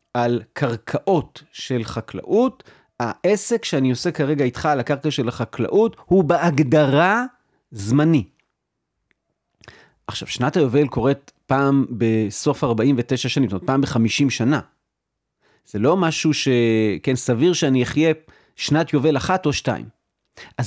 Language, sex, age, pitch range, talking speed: Hebrew, male, 40-59, 135-210 Hz, 125 wpm